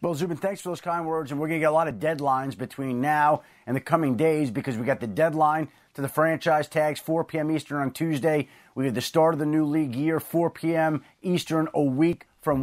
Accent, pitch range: American, 140-165 Hz